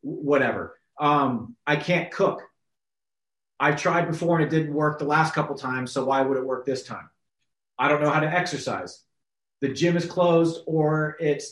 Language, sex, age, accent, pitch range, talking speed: English, male, 30-49, American, 140-165 Hz, 180 wpm